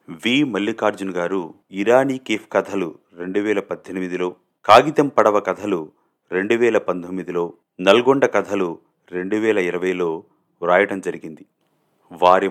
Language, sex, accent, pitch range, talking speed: Telugu, male, native, 100-120 Hz, 100 wpm